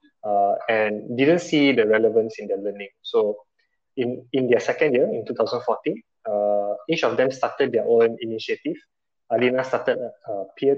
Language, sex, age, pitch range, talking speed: English, male, 20-39, 110-145 Hz, 165 wpm